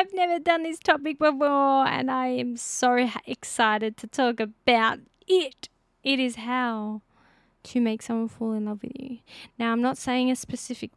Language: English